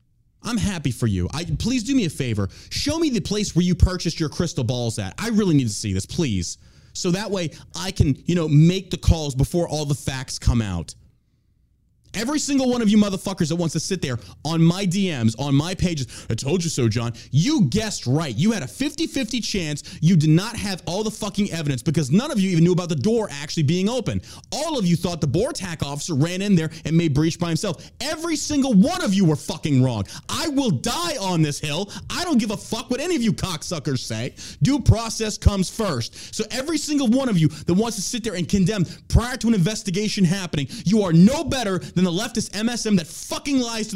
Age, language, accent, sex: 30-49, English, American, male